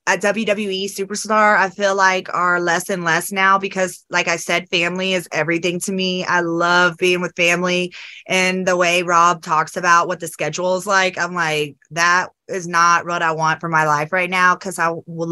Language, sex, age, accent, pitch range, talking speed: English, female, 20-39, American, 170-195 Hz, 205 wpm